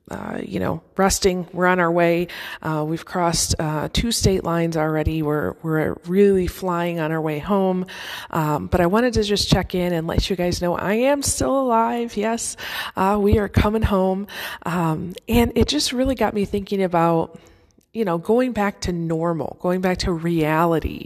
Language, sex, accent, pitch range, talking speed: English, female, American, 170-230 Hz, 190 wpm